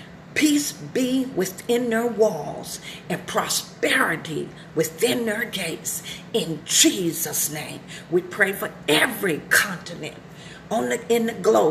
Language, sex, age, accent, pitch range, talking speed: English, female, 50-69, American, 165-225 Hz, 100 wpm